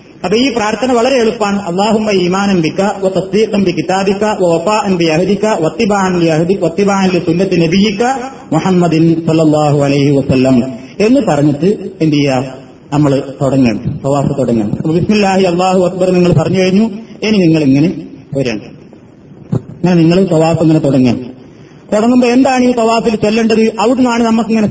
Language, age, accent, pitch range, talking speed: Malayalam, 30-49, native, 165-215 Hz, 95 wpm